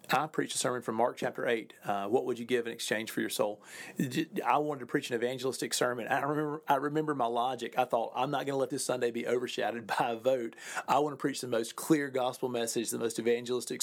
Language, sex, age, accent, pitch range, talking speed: English, male, 40-59, American, 115-135 Hz, 245 wpm